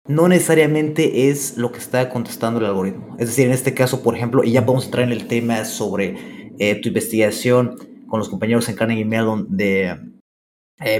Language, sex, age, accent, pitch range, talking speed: Spanish, male, 30-49, Mexican, 115-145 Hz, 190 wpm